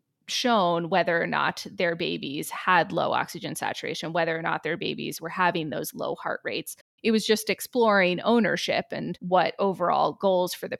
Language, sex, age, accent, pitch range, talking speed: English, female, 20-39, American, 175-225 Hz, 180 wpm